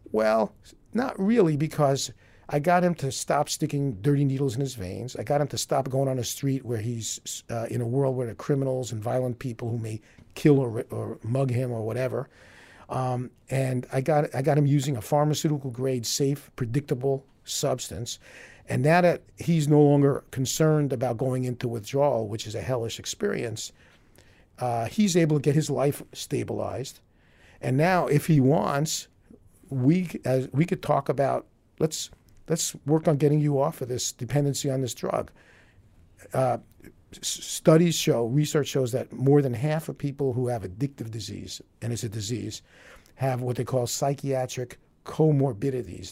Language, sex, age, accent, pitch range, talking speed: English, male, 50-69, American, 115-145 Hz, 170 wpm